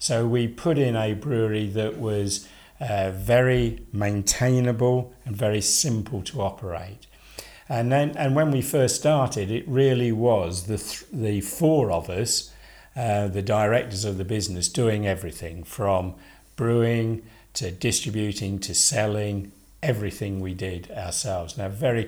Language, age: English, 60-79